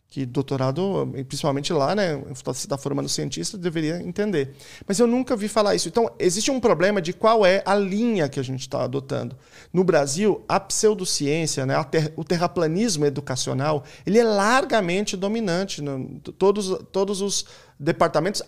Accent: Brazilian